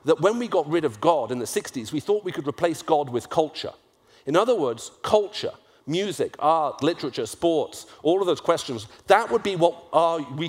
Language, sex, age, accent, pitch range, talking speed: English, male, 40-59, British, 165-225 Hz, 200 wpm